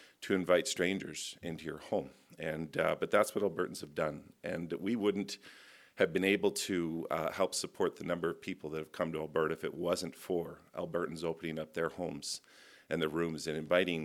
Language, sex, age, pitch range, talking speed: English, male, 50-69, 80-90 Hz, 200 wpm